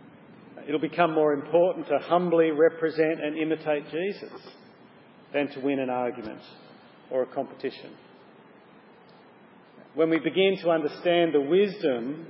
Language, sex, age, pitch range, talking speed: English, male, 40-59, 140-170 Hz, 120 wpm